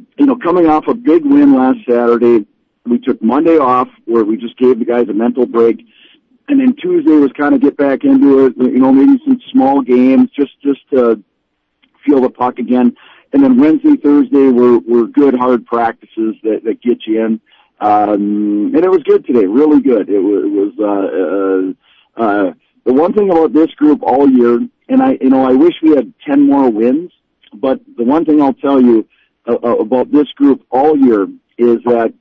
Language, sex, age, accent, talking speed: English, male, 50-69, American, 200 wpm